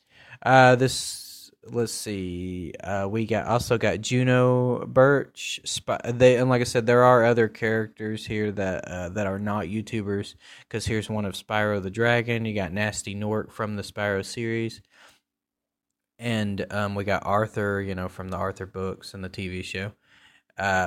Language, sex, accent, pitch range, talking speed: English, male, American, 95-115 Hz, 170 wpm